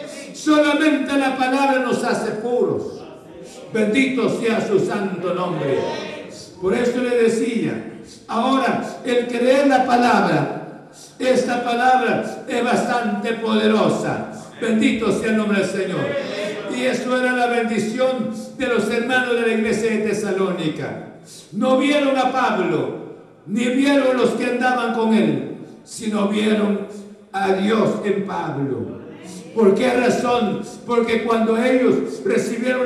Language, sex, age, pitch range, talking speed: Spanish, male, 60-79, 205-250 Hz, 125 wpm